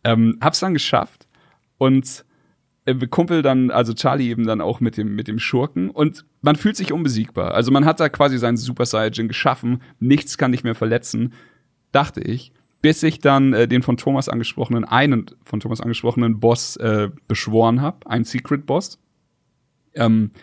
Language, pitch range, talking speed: German, 115-140 Hz, 175 wpm